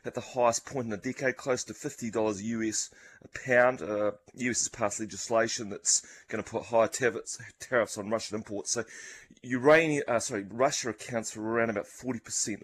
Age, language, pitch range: 30-49, English, 105-120 Hz